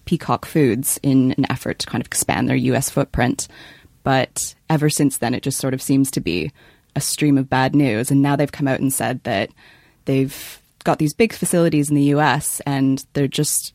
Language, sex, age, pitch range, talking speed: English, female, 20-39, 135-155 Hz, 205 wpm